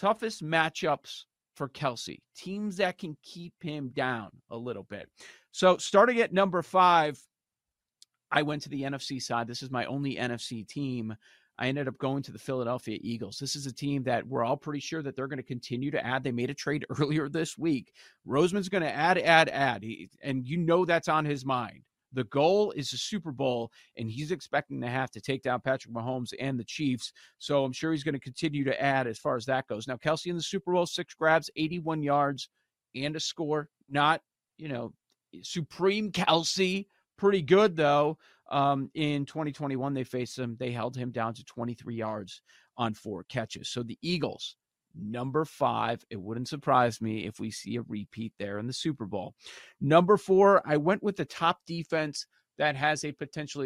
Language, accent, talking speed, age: English, American, 195 wpm, 40-59